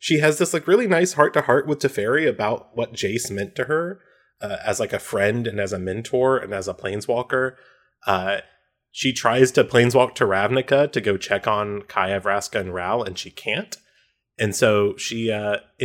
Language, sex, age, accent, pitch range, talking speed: English, male, 20-39, American, 105-140 Hz, 190 wpm